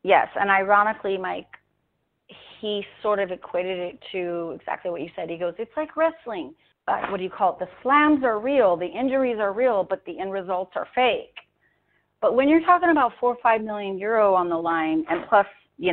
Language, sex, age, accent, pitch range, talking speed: English, female, 40-59, American, 175-260 Hz, 205 wpm